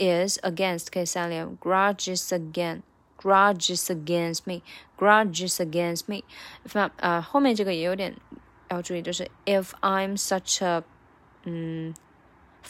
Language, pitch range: Chinese, 175-210 Hz